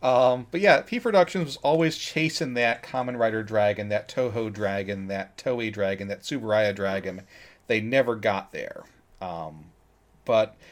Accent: American